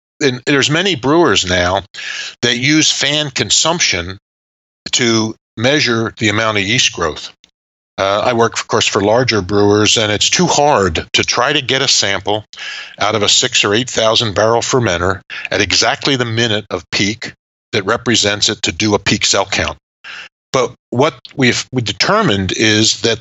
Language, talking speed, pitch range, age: English, 170 wpm, 100-130 Hz, 50-69